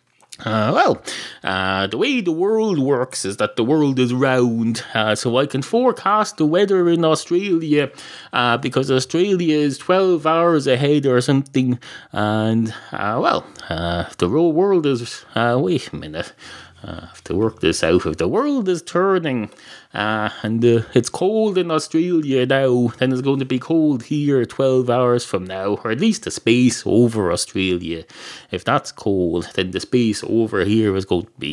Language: English